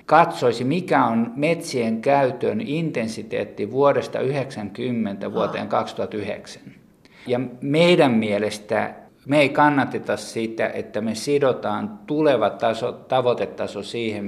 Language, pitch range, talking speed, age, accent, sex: Finnish, 110-140 Hz, 100 wpm, 50-69, native, male